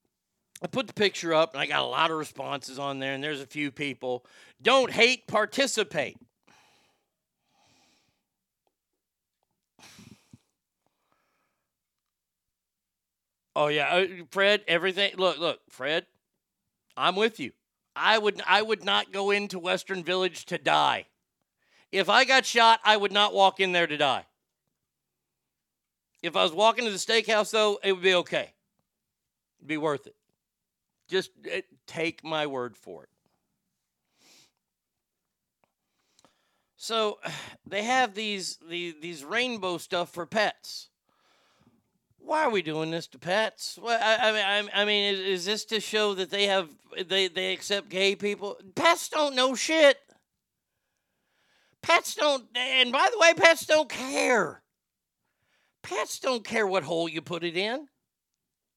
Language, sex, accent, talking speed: English, male, American, 140 wpm